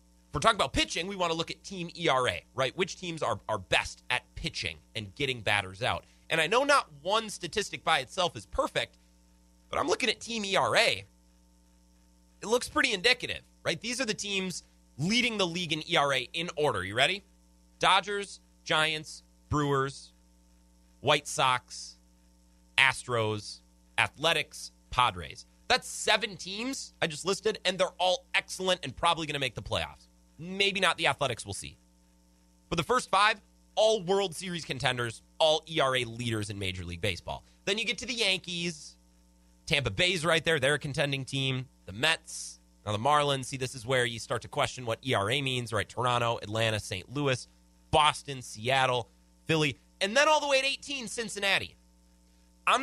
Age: 30-49